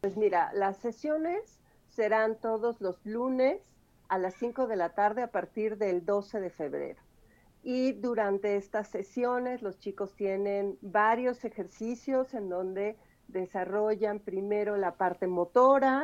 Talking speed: 135 wpm